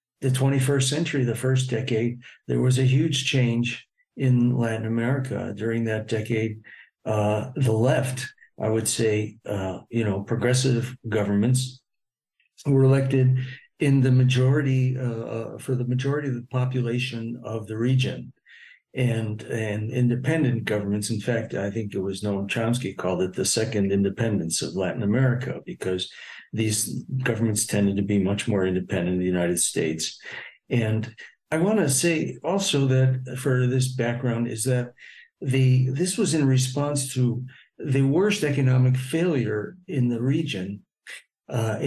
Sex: male